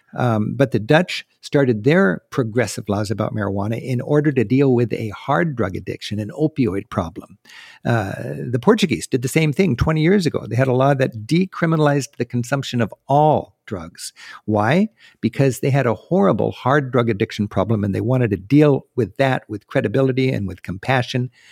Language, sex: English, male